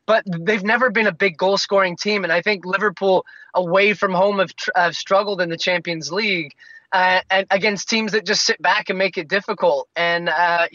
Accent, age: American, 20-39